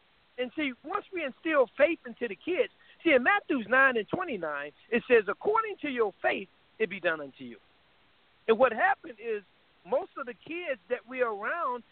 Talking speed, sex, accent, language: 185 wpm, male, American, English